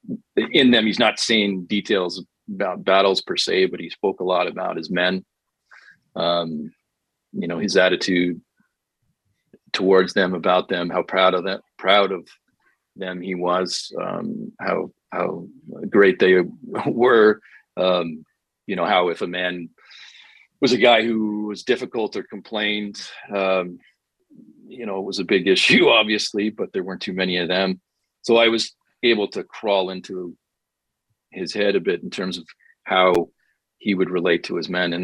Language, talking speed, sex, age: English, 165 wpm, male, 40-59